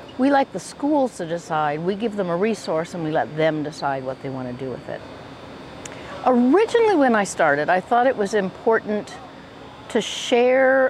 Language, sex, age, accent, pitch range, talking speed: English, female, 60-79, American, 155-210 Hz, 185 wpm